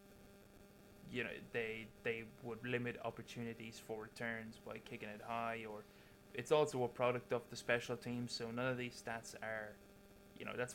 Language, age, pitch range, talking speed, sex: English, 20-39, 110-125 Hz, 175 wpm, male